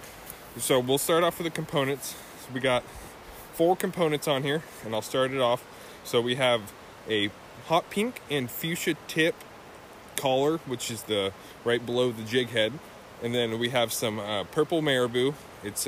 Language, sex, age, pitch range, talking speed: English, male, 20-39, 115-140 Hz, 175 wpm